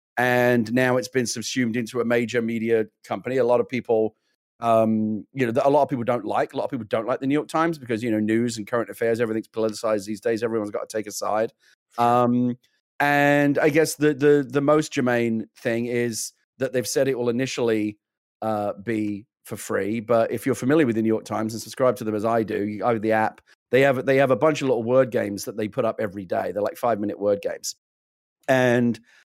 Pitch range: 110-130 Hz